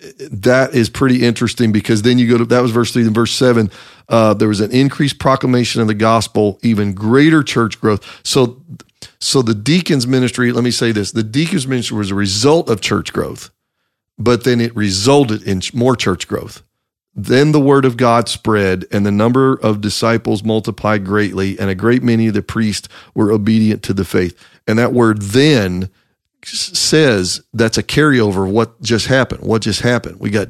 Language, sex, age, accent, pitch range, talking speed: English, male, 40-59, American, 105-130 Hz, 190 wpm